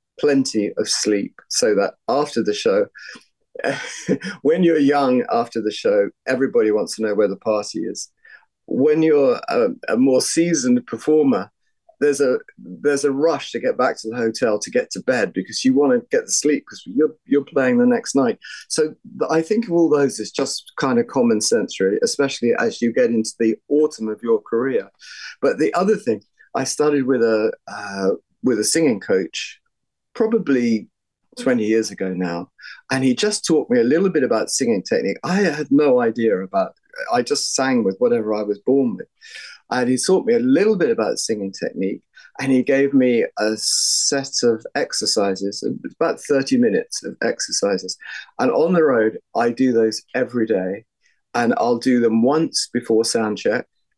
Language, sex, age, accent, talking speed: English, male, 40-59, British, 180 wpm